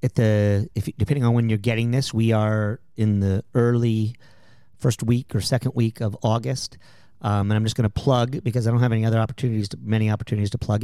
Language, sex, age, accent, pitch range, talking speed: English, male, 40-59, American, 115-135 Hz, 220 wpm